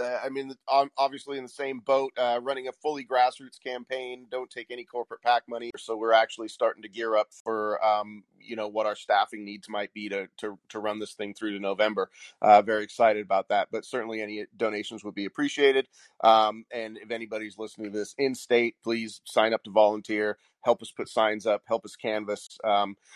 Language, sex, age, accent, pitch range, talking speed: English, male, 30-49, American, 110-140 Hz, 205 wpm